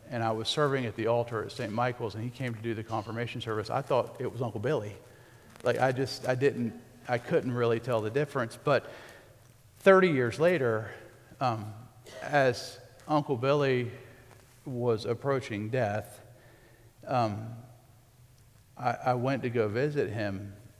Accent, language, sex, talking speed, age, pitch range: American, English, male, 155 wpm, 50-69, 115-125 Hz